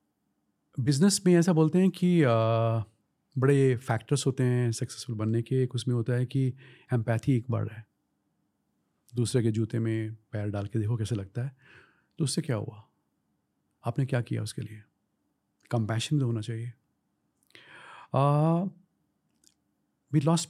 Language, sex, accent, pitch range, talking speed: Hindi, male, native, 110-140 Hz, 145 wpm